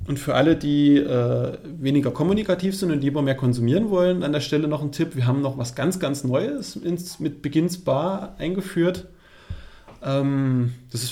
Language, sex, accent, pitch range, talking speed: German, male, German, 125-165 Hz, 180 wpm